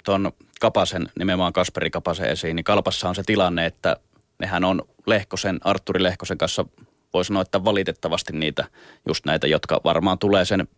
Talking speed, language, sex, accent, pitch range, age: 160 wpm, Finnish, male, native, 85-100 Hz, 30-49